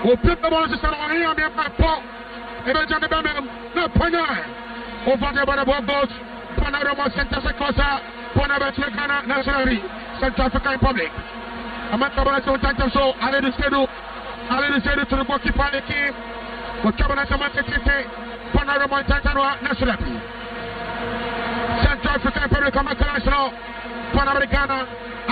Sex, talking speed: male, 85 wpm